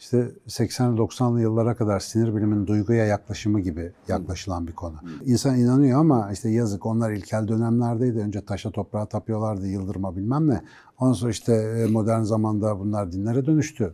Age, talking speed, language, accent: 60-79, 155 wpm, Turkish, native